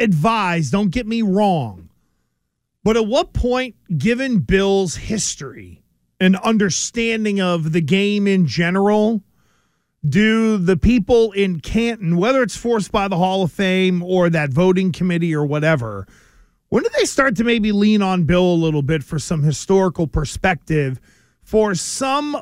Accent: American